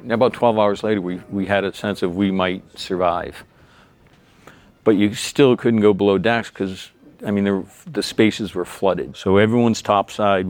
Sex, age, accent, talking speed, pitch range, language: male, 50-69, American, 185 wpm, 95-110 Hz, English